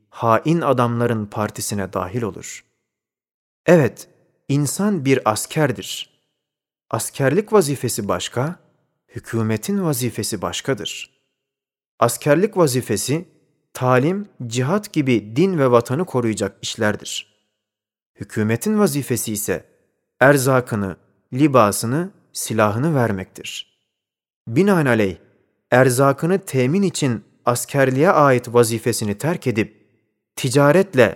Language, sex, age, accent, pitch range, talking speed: Turkish, male, 40-59, native, 110-150 Hz, 80 wpm